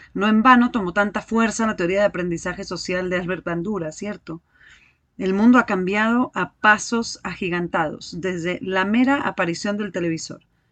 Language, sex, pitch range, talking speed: Spanish, female, 180-240 Hz, 155 wpm